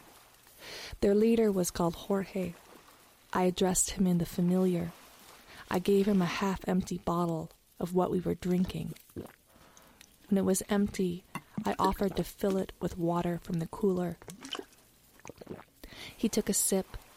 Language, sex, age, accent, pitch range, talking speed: English, female, 20-39, American, 170-195 Hz, 140 wpm